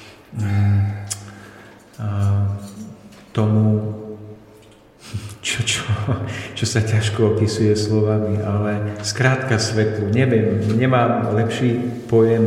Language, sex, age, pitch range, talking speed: Slovak, male, 50-69, 105-115 Hz, 65 wpm